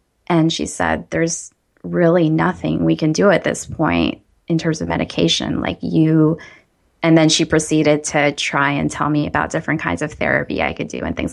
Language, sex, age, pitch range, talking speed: English, female, 20-39, 150-175 Hz, 195 wpm